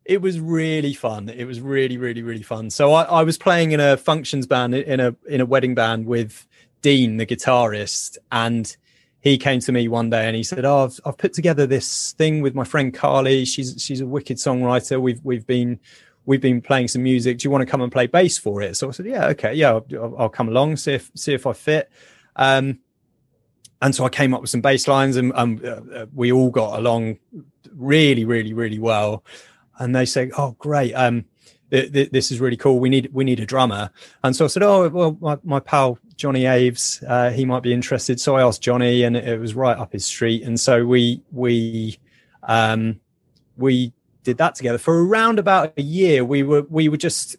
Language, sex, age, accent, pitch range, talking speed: English, male, 20-39, British, 120-140 Hz, 215 wpm